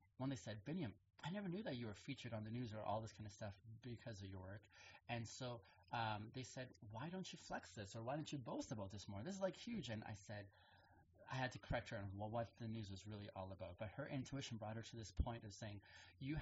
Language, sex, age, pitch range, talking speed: English, male, 30-49, 100-125 Hz, 265 wpm